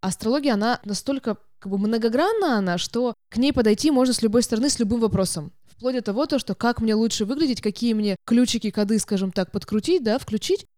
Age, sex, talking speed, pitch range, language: 20-39, female, 195 wpm, 195-255 Hz, Russian